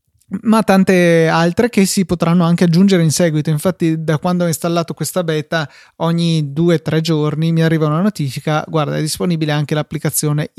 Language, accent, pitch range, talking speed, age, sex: Italian, native, 155-190 Hz, 165 wpm, 20-39, male